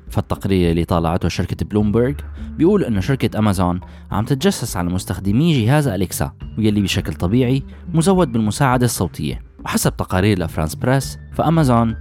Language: Arabic